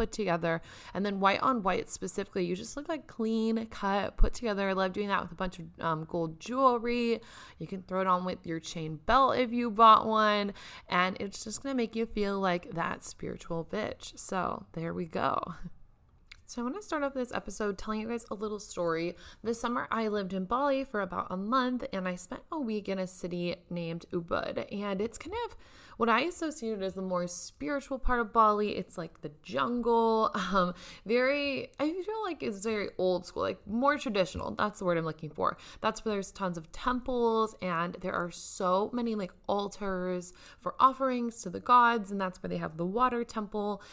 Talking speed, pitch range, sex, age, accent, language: 210 wpm, 185-240 Hz, female, 20-39, American, English